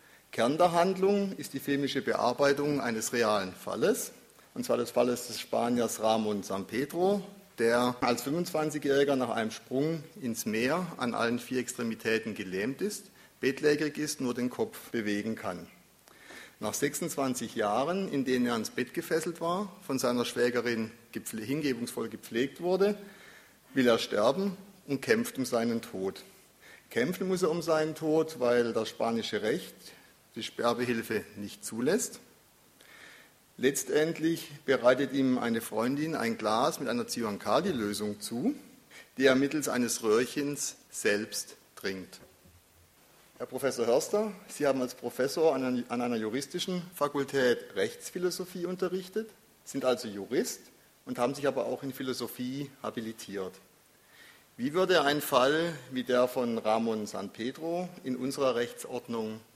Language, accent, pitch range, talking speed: German, German, 115-160 Hz, 135 wpm